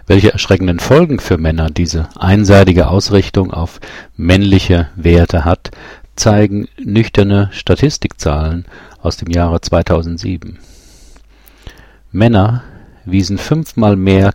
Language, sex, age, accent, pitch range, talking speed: German, male, 50-69, German, 85-100 Hz, 95 wpm